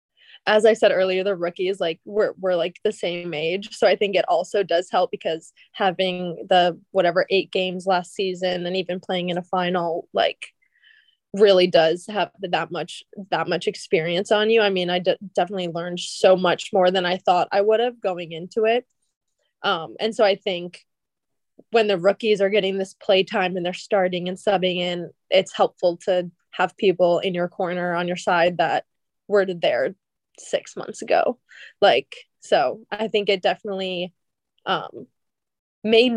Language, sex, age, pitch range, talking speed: English, female, 20-39, 180-205 Hz, 180 wpm